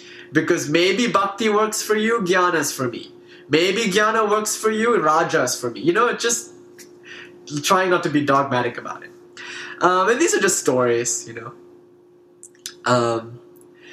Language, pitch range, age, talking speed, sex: English, 150-250 Hz, 20-39, 160 wpm, male